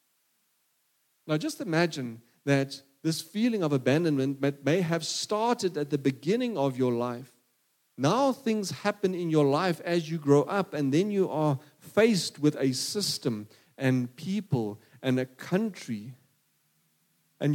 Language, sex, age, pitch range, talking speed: English, male, 40-59, 135-175 Hz, 140 wpm